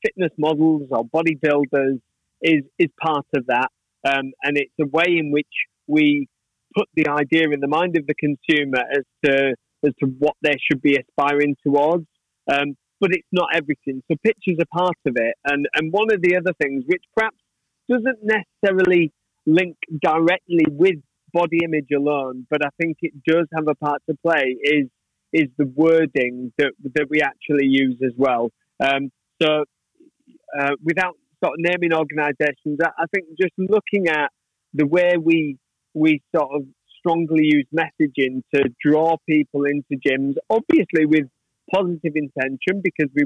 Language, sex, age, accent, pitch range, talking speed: English, male, 30-49, British, 140-170 Hz, 165 wpm